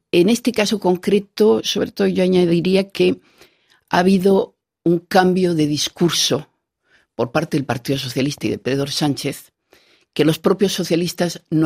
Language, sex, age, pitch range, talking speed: Spanish, female, 50-69, 145-195 Hz, 150 wpm